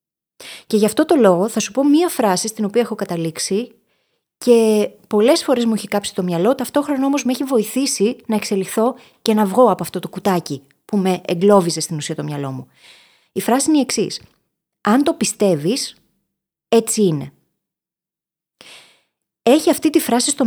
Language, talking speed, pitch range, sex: Greek, 175 wpm, 185-255 Hz, female